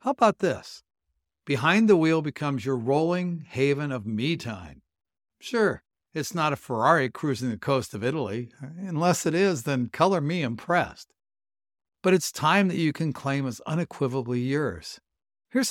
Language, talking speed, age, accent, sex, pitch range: English, 155 wpm, 60-79, American, male, 115-170 Hz